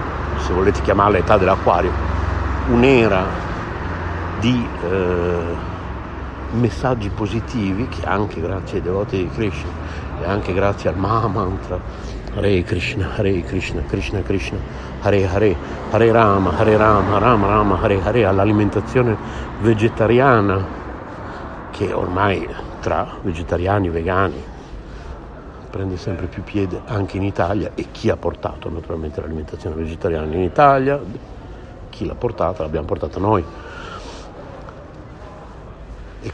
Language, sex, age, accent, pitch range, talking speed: Italian, male, 60-79, native, 90-115 Hz, 115 wpm